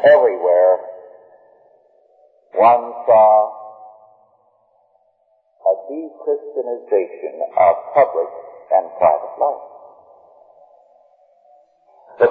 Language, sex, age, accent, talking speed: English, male, 50-69, American, 55 wpm